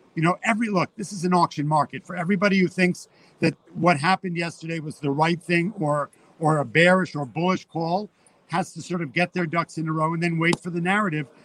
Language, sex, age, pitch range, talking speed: English, male, 50-69, 165-195 Hz, 230 wpm